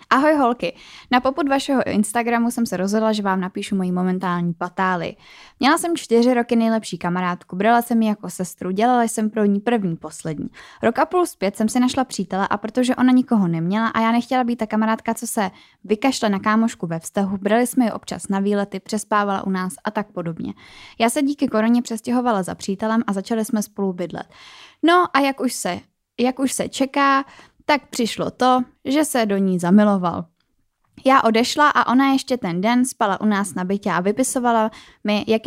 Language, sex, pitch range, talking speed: Czech, female, 195-240 Hz, 195 wpm